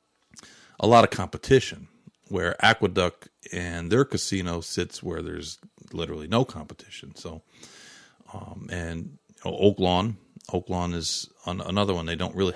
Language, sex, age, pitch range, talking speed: English, male, 40-59, 90-110 Hz, 150 wpm